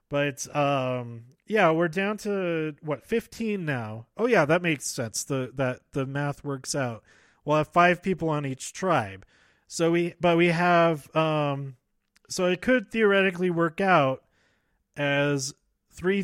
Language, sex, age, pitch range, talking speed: English, male, 30-49, 130-170 Hz, 150 wpm